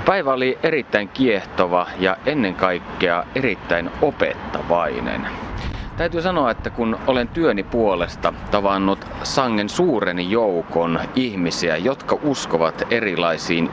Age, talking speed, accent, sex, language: 30-49, 105 wpm, native, male, Finnish